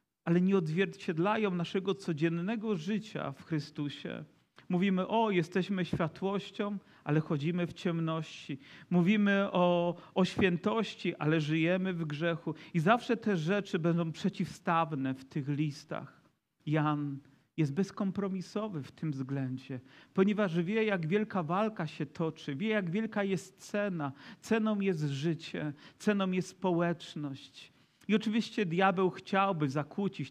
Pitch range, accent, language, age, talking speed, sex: 145-195 Hz, native, Polish, 40-59, 125 wpm, male